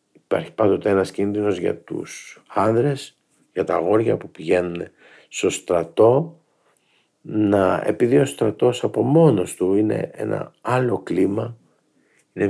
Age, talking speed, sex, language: 50-69, 125 wpm, male, Greek